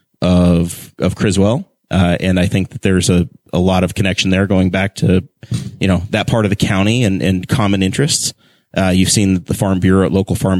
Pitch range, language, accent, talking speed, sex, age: 95-110 Hz, English, American, 210 wpm, male, 30-49